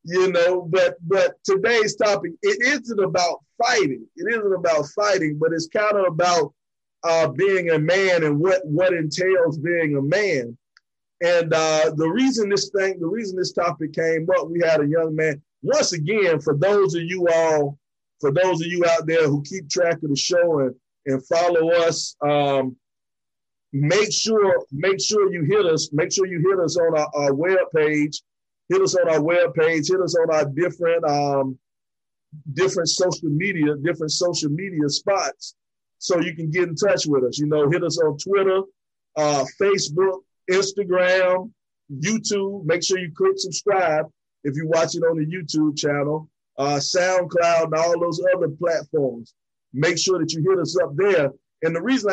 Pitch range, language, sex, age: 155-190 Hz, English, male, 30-49